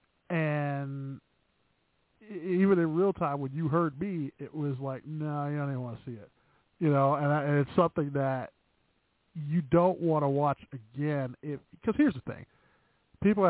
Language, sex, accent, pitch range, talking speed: English, male, American, 140-180 Hz, 170 wpm